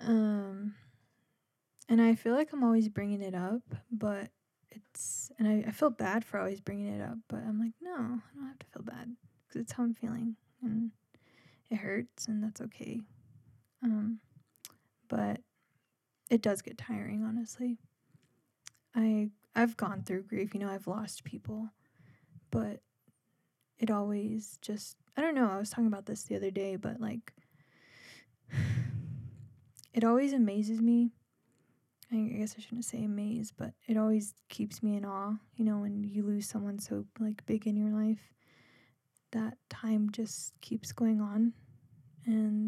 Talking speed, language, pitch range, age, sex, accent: 160 wpm, English, 140-225 Hz, 20-39, female, American